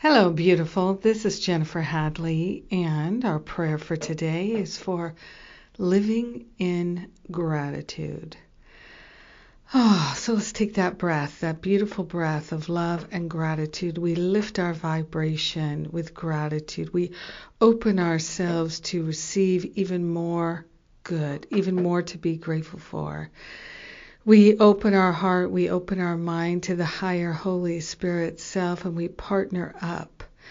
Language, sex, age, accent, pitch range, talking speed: English, female, 50-69, American, 165-190 Hz, 130 wpm